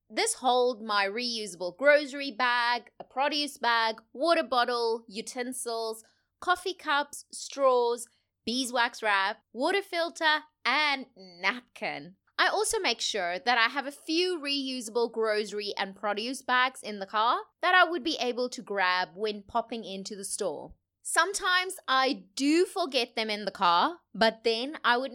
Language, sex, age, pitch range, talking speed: English, female, 20-39, 210-295 Hz, 150 wpm